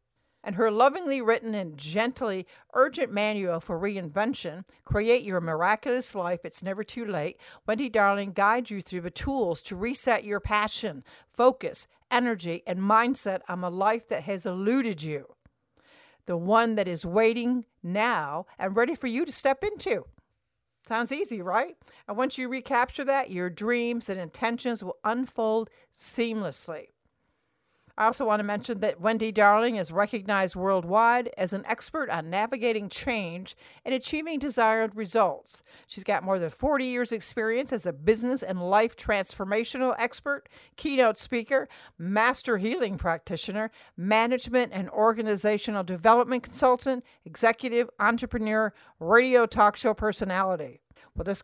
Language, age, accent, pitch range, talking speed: English, 60-79, American, 200-245 Hz, 140 wpm